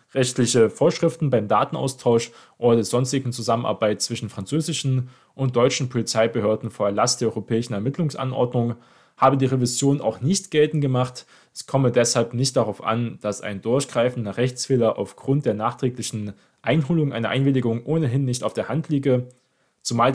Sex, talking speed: male, 145 wpm